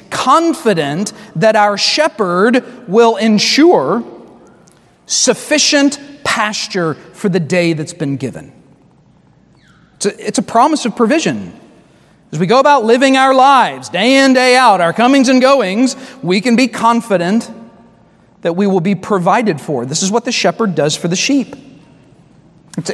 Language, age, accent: English, 40-59, American